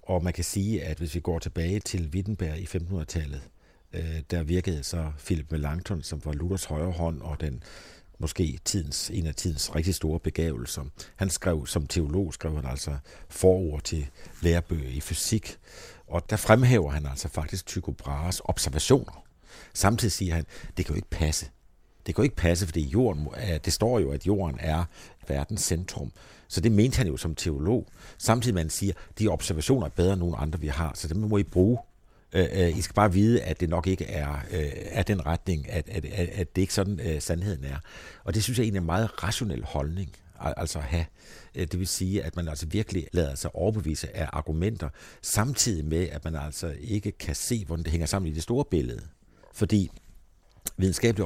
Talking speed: 195 wpm